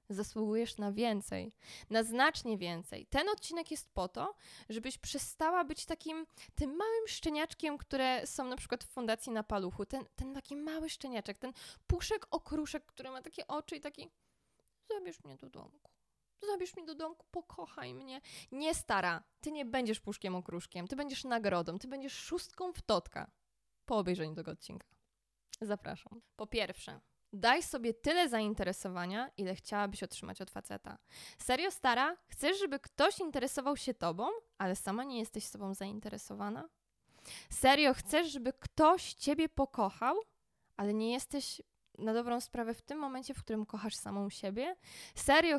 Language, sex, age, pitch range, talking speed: Polish, female, 20-39, 215-315 Hz, 155 wpm